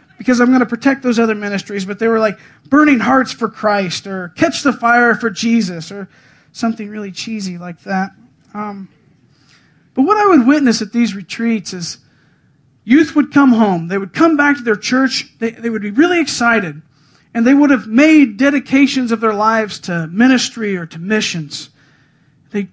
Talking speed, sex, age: 185 wpm, male, 40-59